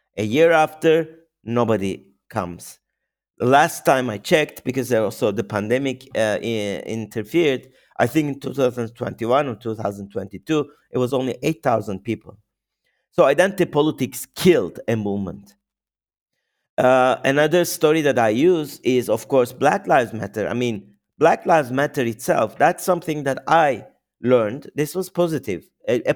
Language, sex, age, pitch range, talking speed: English, male, 50-69, 105-140 Hz, 140 wpm